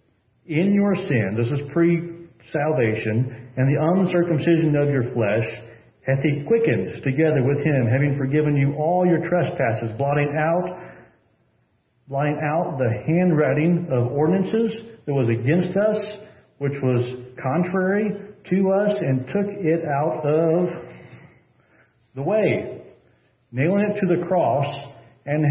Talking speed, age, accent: 125 wpm, 40-59, American